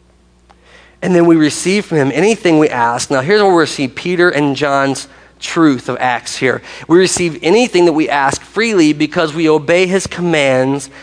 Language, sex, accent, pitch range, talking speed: English, male, American, 125-175 Hz, 180 wpm